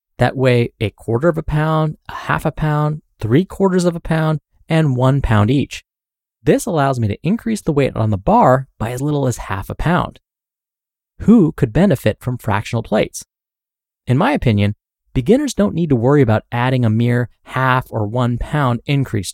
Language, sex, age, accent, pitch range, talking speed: English, male, 20-39, American, 110-155 Hz, 185 wpm